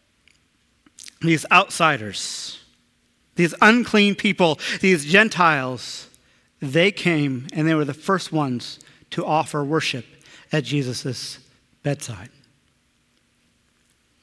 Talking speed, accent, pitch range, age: 90 wpm, American, 155-210 Hz, 40-59